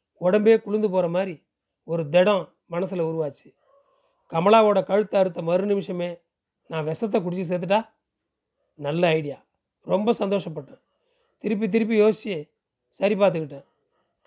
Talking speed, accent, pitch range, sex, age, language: 105 wpm, native, 170-210 Hz, male, 40-59, Tamil